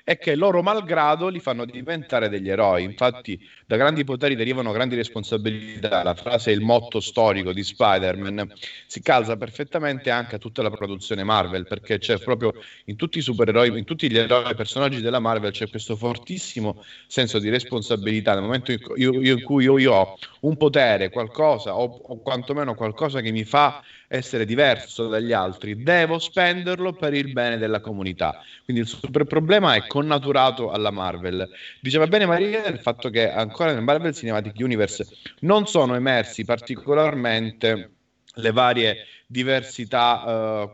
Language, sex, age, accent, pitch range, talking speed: Italian, male, 30-49, native, 110-145 Hz, 165 wpm